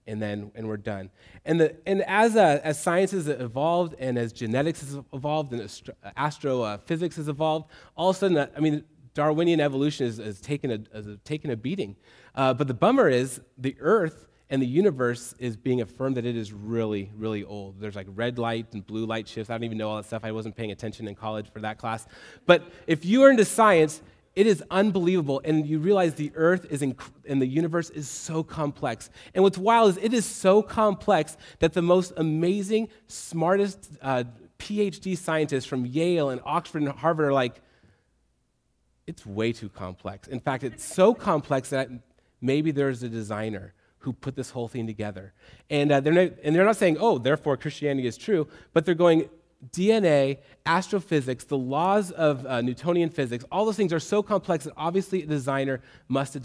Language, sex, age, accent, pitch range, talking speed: English, male, 30-49, American, 120-170 Hz, 200 wpm